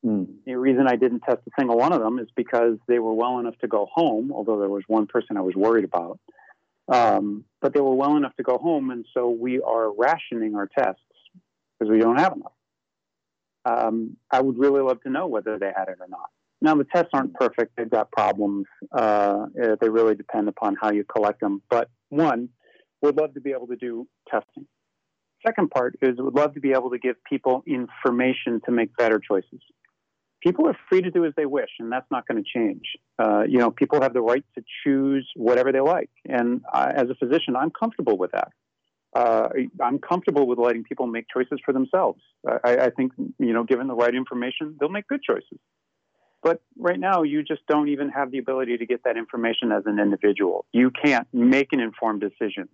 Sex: male